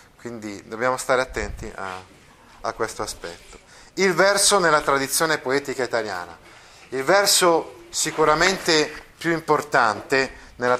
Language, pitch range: Italian, 115-155 Hz